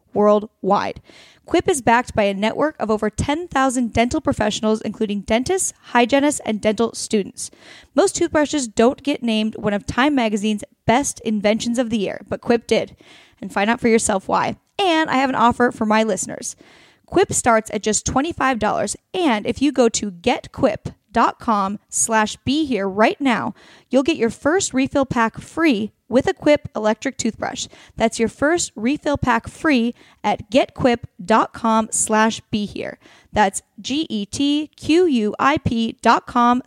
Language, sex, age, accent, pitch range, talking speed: English, female, 10-29, American, 215-285 Hz, 145 wpm